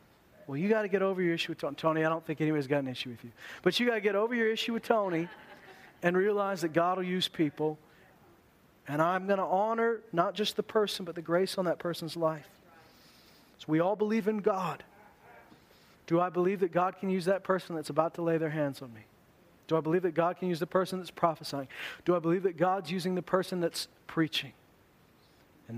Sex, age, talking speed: male, 40-59, 230 wpm